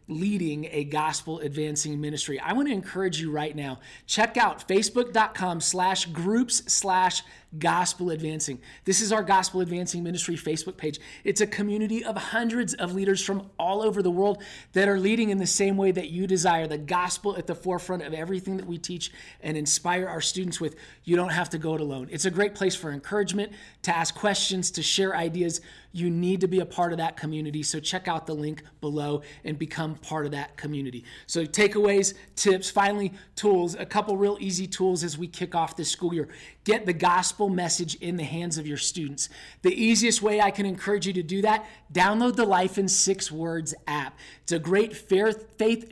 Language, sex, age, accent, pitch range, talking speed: English, male, 20-39, American, 165-205 Hz, 200 wpm